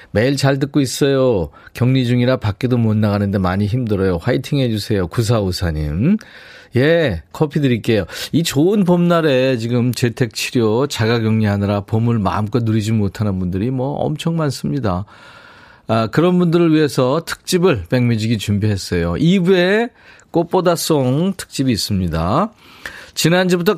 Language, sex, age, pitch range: Korean, male, 40-59, 110-165 Hz